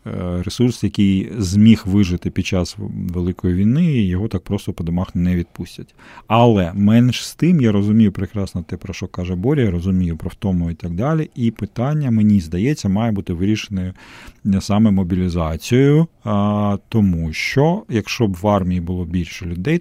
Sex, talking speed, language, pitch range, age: male, 160 wpm, Ukrainian, 95-115 Hz, 40-59